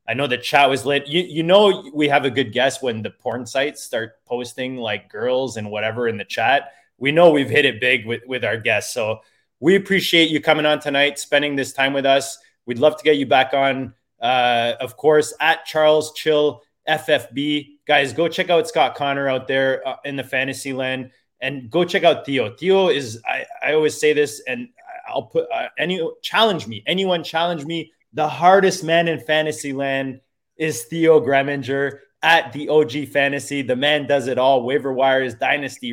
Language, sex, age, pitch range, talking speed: English, male, 20-39, 125-155 Hz, 200 wpm